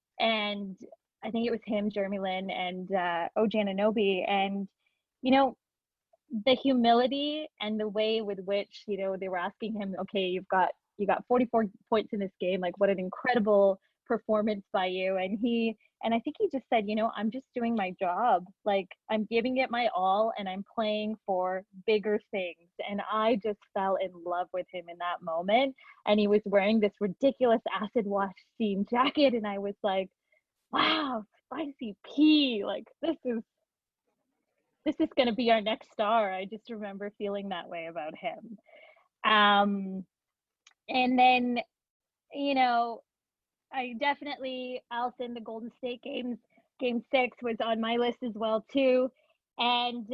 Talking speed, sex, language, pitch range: 170 wpm, female, English, 200-255 Hz